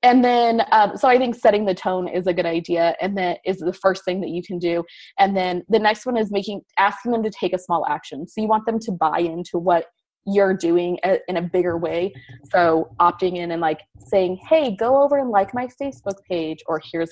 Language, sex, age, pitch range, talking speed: English, female, 20-39, 175-225 Hz, 240 wpm